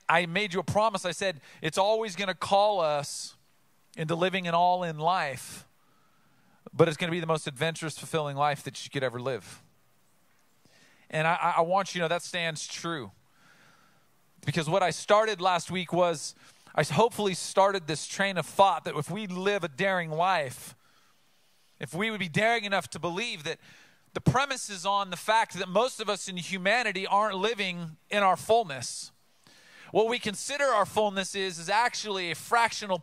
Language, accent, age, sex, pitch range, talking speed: English, American, 40-59, male, 170-210 Hz, 180 wpm